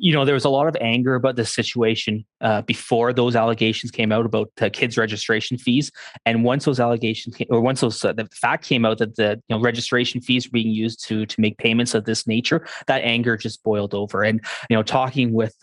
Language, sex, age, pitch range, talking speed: English, male, 20-39, 115-135 Hz, 235 wpm